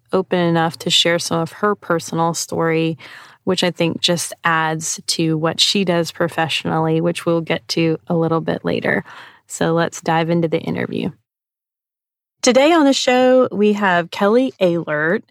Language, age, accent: English, 20-39, American